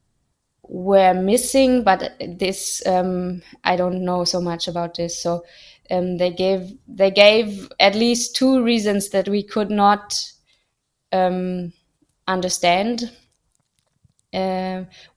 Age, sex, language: 20-39, female, English